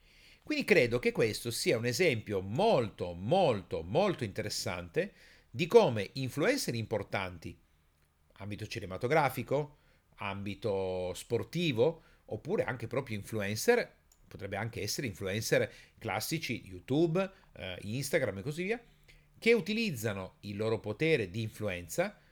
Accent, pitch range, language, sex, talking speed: native, 105-165 Hz, Italian, male, 110 wpm